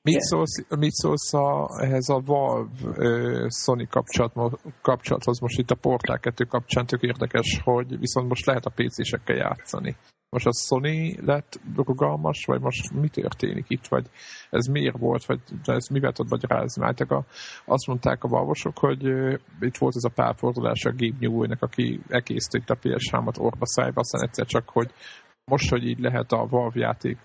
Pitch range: 90-130 Hz